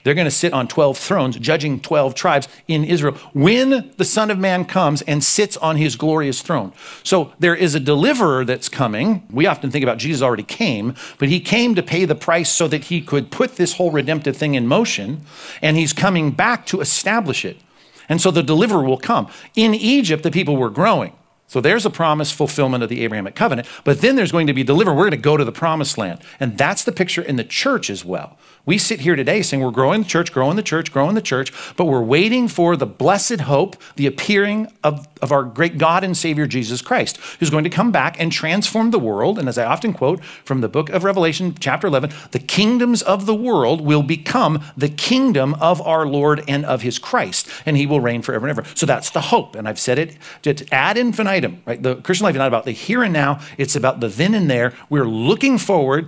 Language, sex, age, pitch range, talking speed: English, male, 50-69, 140-185 Hz, 230 wpm